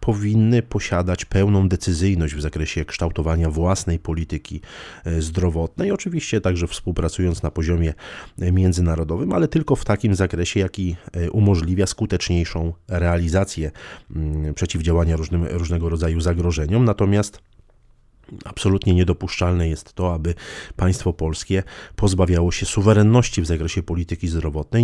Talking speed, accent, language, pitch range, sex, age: 105 wpm, native, Polish, 85-95 Hz, male, 30-49